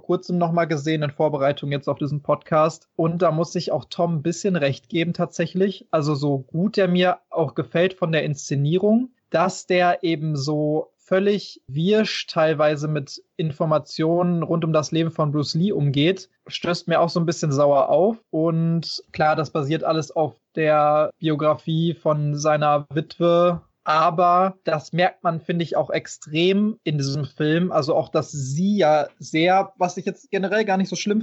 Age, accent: 20-39, German